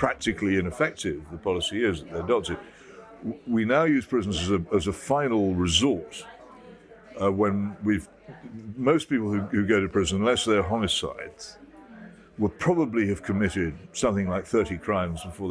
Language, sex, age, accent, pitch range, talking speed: English, male, 60-79, British, 95-110 Hz, 150 wpm